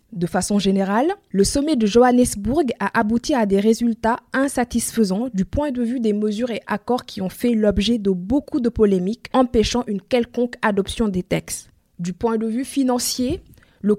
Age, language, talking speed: 20-39, French, 175 wpm